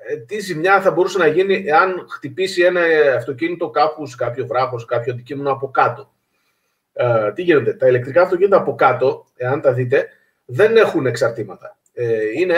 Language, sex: Greek, male